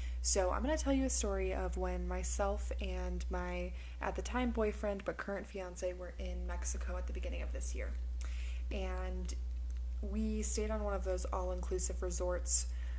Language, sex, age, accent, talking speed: English, female, 20-39, American, 175 wpm